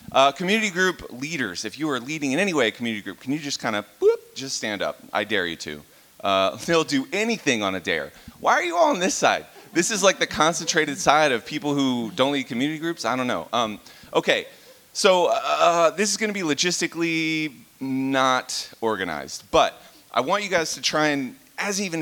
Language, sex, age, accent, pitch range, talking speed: English, male, 30-49, American, 100-155 Hz, 215 wpm